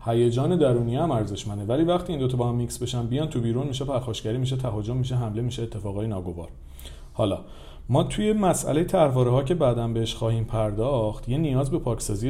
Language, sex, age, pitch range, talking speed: Persian, male, 40-59, 100-130 Hz, 195 wpm